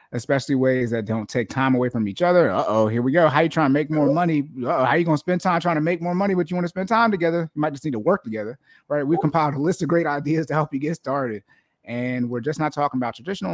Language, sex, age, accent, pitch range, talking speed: English, male, 30-49, American, 125-165 Hz, 305 wpm